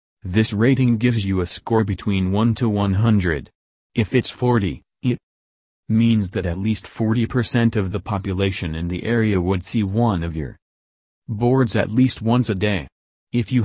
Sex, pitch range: male, 90-115 Hz